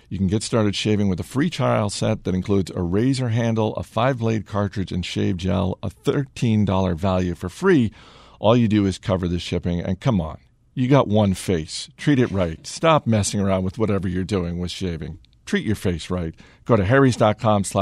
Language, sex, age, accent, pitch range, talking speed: English, male, 50-69, American, 95-125 Hz, 200 wpm